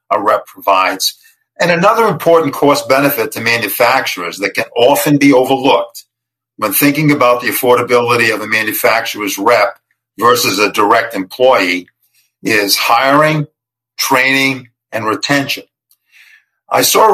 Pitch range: 115-145 Hz